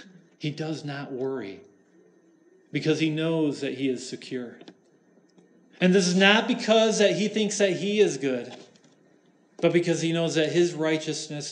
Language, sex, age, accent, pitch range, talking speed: English, male, 40-59, American, 140-185 Hz, 155 wpm